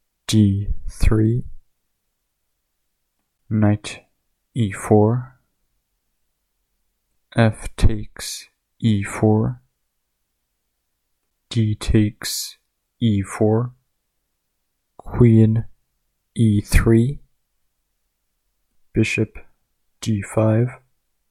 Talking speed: 35 wpm